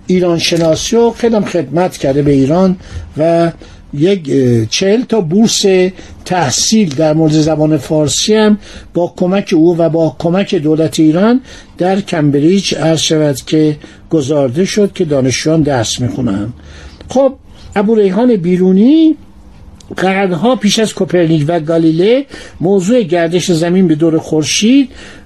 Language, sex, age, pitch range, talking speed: Persian, male, 60-79, 160-215 Hz, 125 wpm